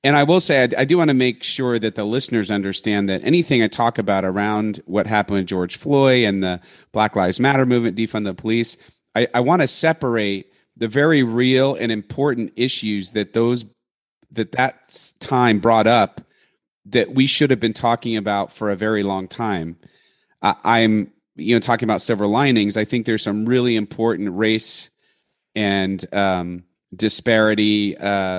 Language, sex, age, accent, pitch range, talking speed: English, male, 30-49, American, 100-120 Hz, 175 wpm